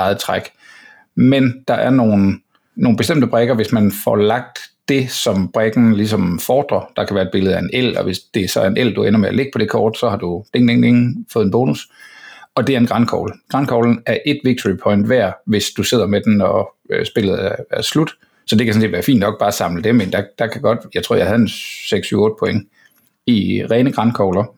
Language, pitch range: Danish, 105-130 Hz